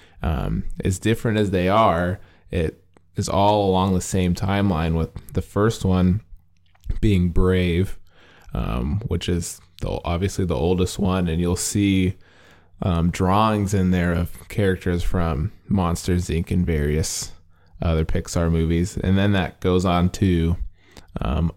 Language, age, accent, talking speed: English, 20-39, American, 140 wpm